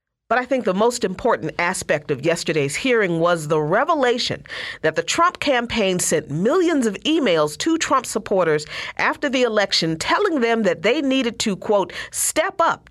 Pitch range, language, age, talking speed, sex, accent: 170-280 Hz, English, 40-59, 165 wpm, female, American